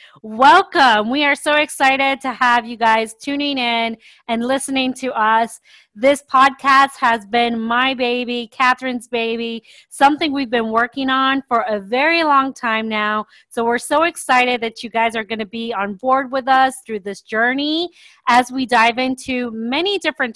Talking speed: 170 wpm